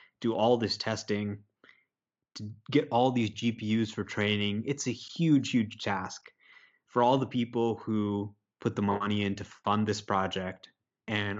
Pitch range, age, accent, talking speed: 100-115 Hz, 20-39, American, 160 wpm